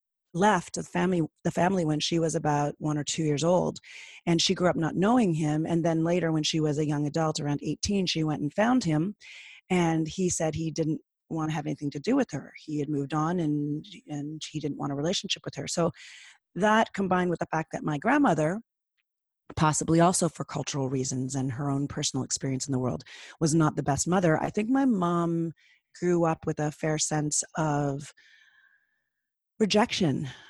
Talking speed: 200 wpm